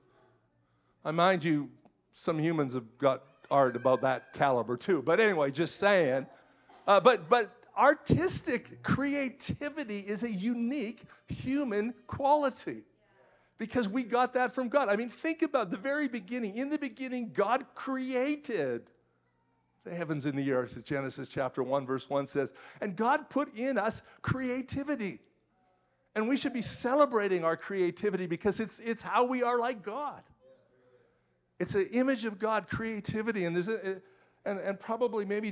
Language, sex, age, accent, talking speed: English, male, 50-69, American, 150 wpm